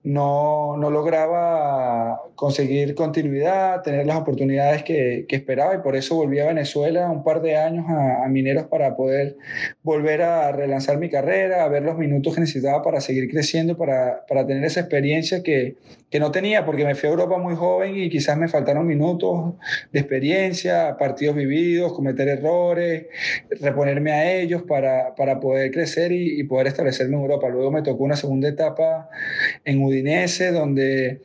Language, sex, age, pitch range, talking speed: Spanish, male, 20-39, 135-165 Hz, 170 wpm